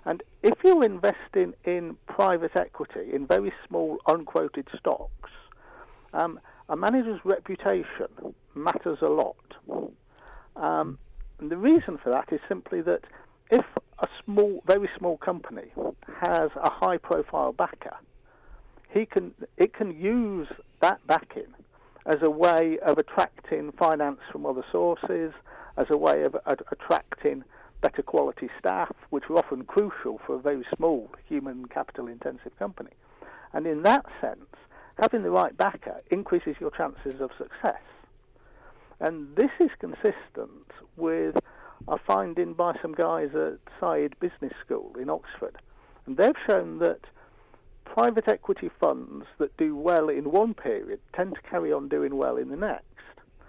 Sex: male